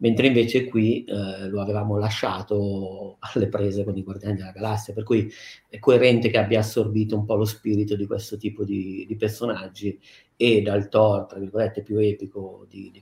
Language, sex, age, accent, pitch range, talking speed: Italian, male, 40-59, native, 100-115 Hz, 185 wpm